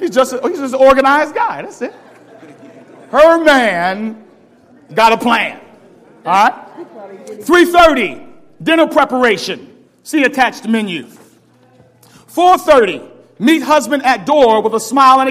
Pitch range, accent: 250-315 Hz, American